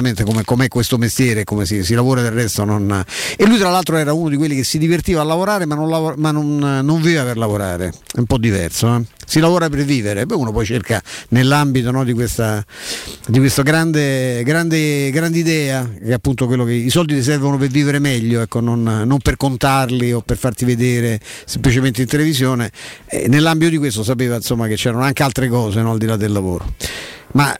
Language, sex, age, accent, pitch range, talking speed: Italian, male, 50-69, native, 120-150 Hz, 215 wpm